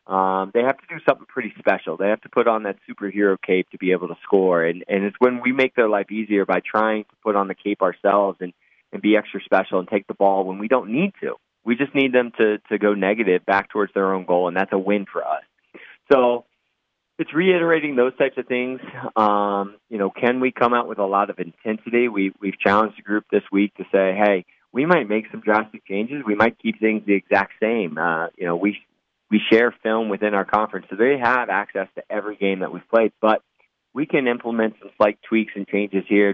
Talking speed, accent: 235 wpm, American